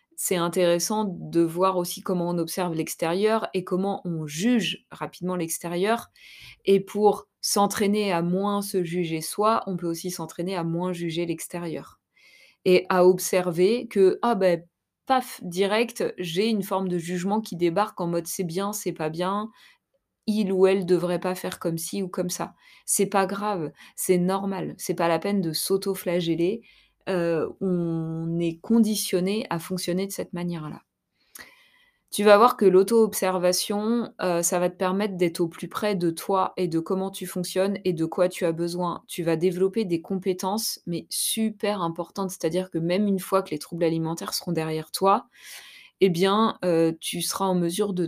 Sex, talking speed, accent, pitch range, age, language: female, 175 wpm, French, 175-200 Hz, 20-39, French